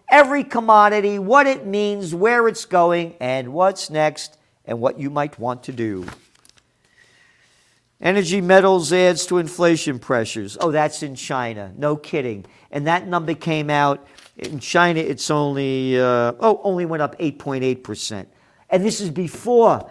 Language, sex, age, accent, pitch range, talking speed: English, male, 50-69, American, 130-190 Hz, 150 wpm